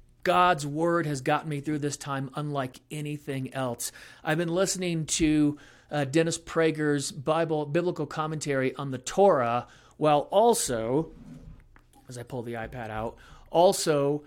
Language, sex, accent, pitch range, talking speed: English, male, American, 145-185 Hz, 140 wpm